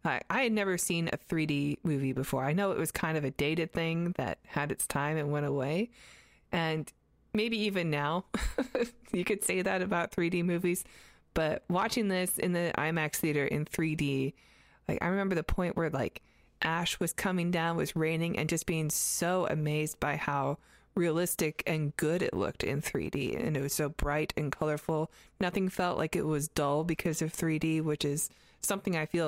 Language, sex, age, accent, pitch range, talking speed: English, female, 20-39, American, 150-180 Hz, 190 wpm